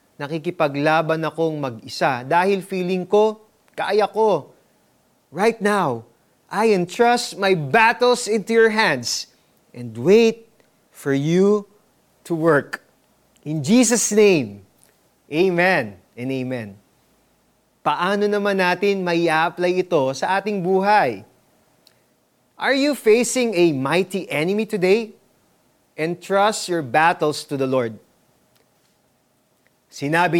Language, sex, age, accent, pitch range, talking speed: Filipino, male, 30-49, native, 150-205 Hz, 100 wpm